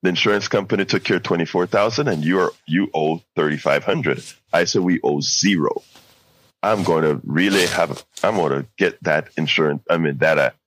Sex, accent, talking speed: male, American, 190 wpm